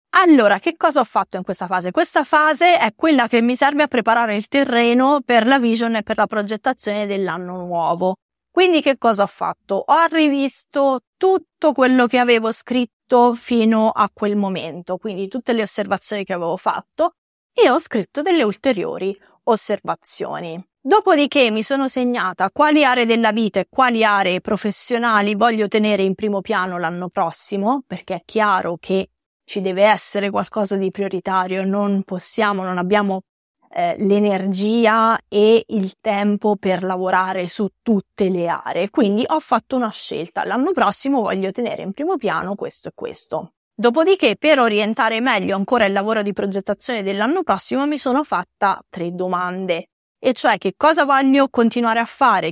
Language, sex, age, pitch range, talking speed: Italian, female, 30-49, 195-260 Hz, 160 wpm